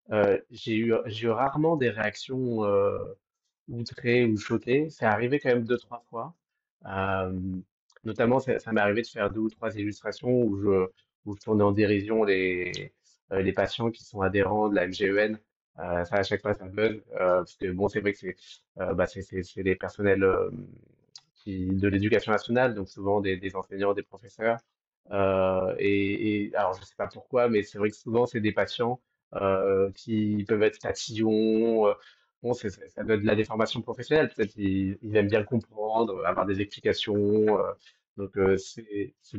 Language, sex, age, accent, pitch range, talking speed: French, male, 30-49, French, 100-115 Hz, 185 wpm